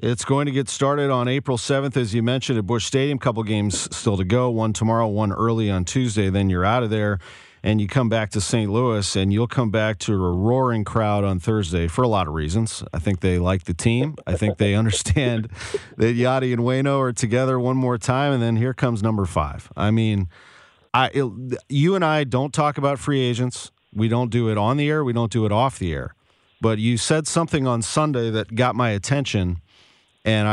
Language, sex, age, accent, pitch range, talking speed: English, male, 40-59, American, 105-125 Hz, 225 wpm